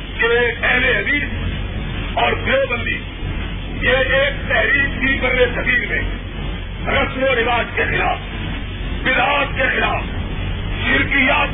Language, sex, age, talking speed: Urdu, male, 50-69, 115 wpm